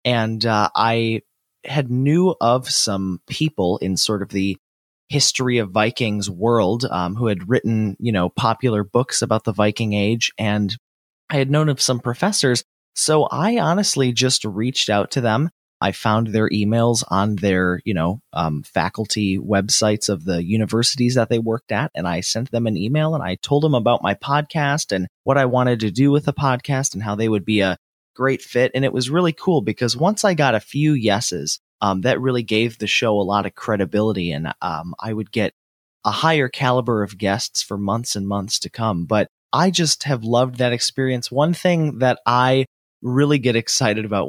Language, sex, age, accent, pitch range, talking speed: English, male, 30-49, American, 100-130 Hz, 195 wpm